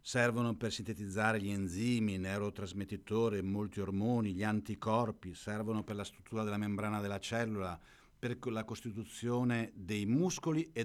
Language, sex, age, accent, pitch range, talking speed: Italian, male, 50-69, native, 100-130 Hz, 140 wpm